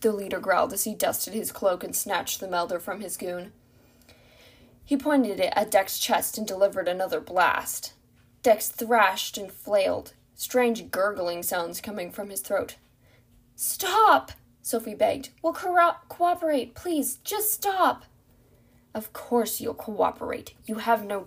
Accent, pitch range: American, 190-250 Hz